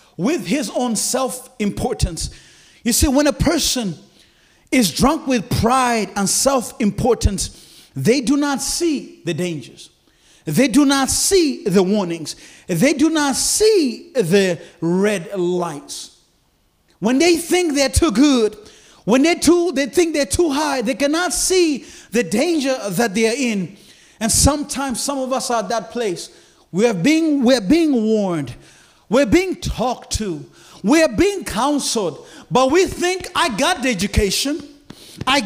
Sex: male